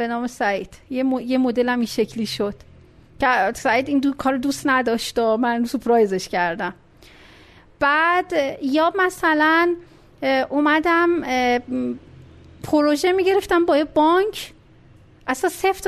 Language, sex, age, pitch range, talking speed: Persian, female, 40-59, 250-345 Hz, 115 wpm